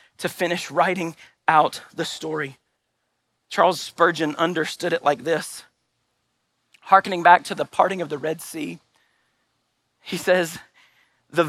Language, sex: English, male